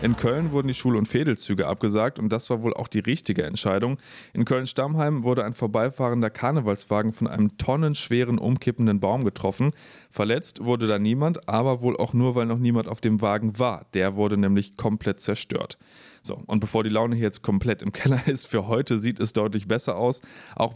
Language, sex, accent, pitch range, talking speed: German, male, German, 105-125 Hz, 195 wpm